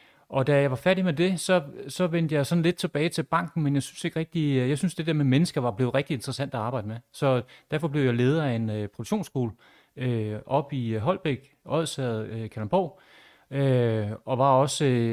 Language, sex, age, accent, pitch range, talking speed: Danish, male, 30-49, native, 120-160 Hz, 220 wpm